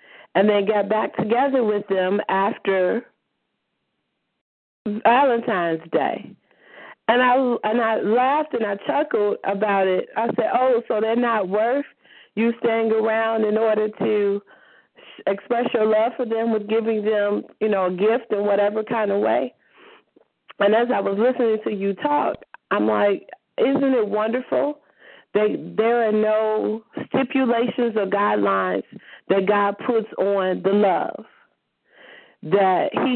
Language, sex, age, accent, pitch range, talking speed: English, female, 40-59, American, 200-240 Hz, 140 wpm